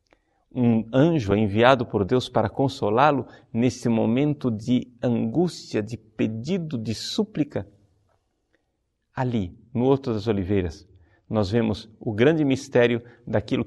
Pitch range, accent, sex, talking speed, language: 100-125 Hz, Brazilian, male, 115 wpm, Portuguese